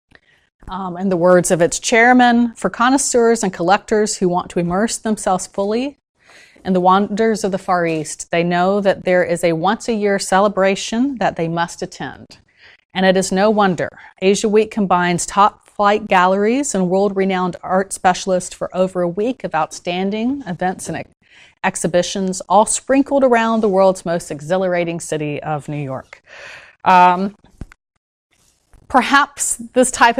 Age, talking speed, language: 30-49, 145 wpm, English